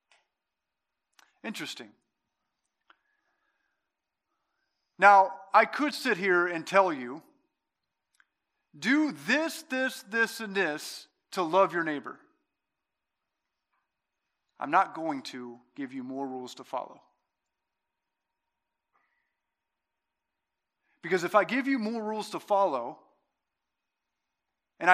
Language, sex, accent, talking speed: English, male, American, 95 wpm